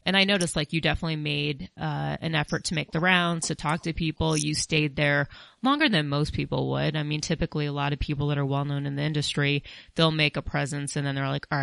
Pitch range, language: 140-165 Hz, English